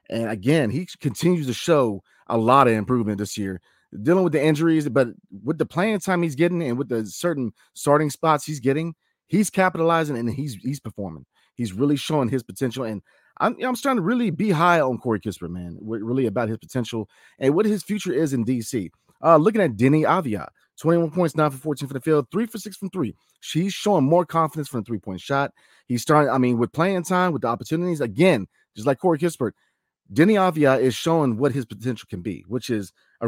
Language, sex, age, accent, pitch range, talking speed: English, male, 30-49, American, 115-170 Hz, 215 wpm